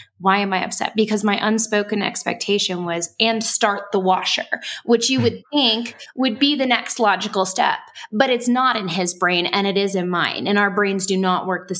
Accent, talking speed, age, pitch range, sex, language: American, 210 wpm, 20-39, 190-245 Hz, female, English